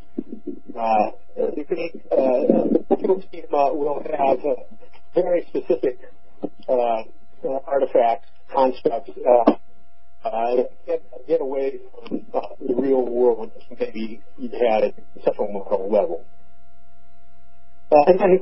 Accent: American